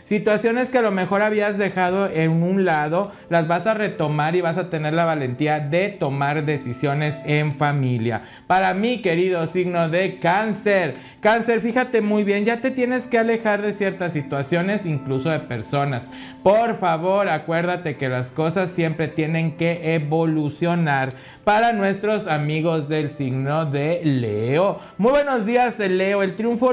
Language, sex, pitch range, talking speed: Spanish, male, 150-195 Hz, 155 wpm